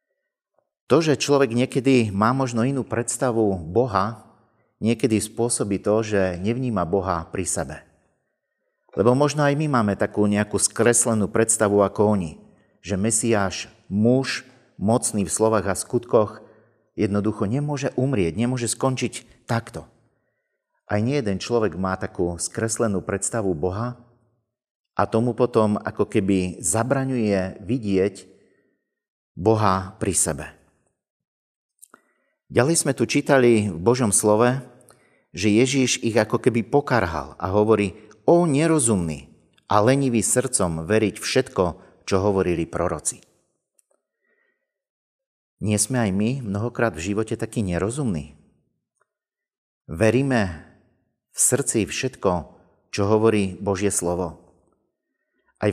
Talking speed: 110 wpm